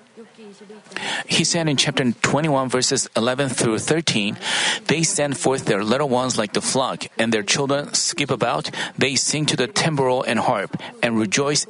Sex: male